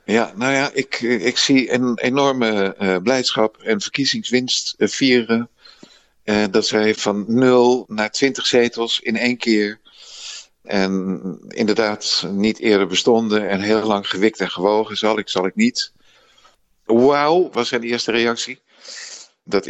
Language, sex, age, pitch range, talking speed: Dutch, male, 50-69, 100-125 Hz, 140 wpm